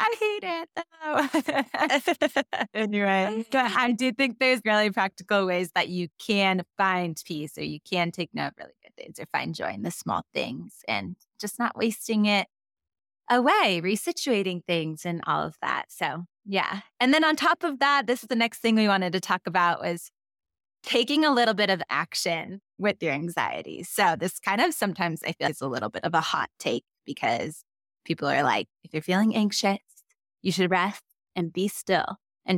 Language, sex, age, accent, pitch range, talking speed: English, female, 20-39, American, 175-230 Hz, 195 wpm